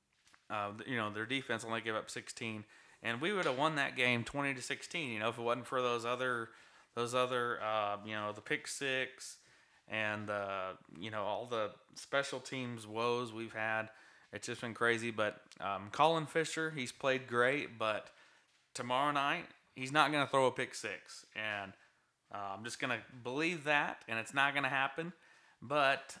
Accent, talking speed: American, 190 wpm